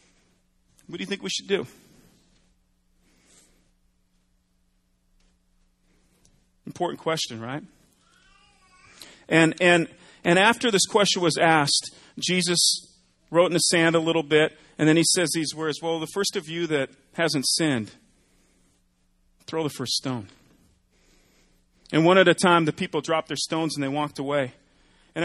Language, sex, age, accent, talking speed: English, male, 40-59, American, 140 wpm